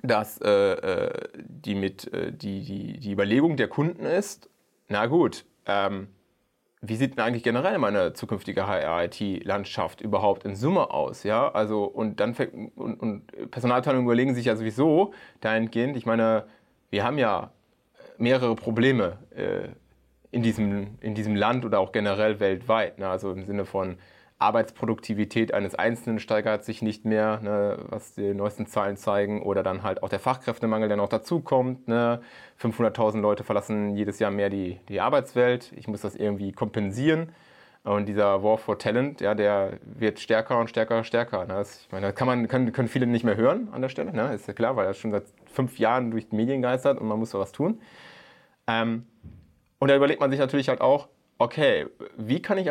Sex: male